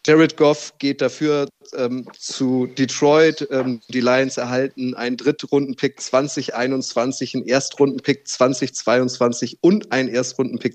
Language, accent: German, German